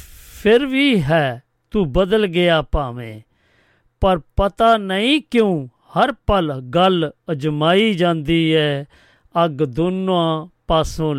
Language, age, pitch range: Punjabi, 50-69, 140-180 Hz